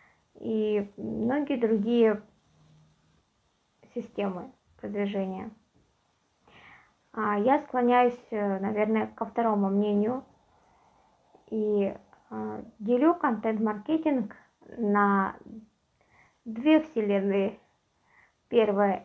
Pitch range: 205-235 Hz